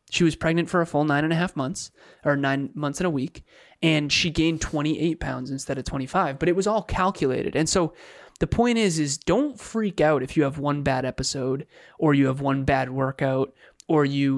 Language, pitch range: English, 135-170 Hz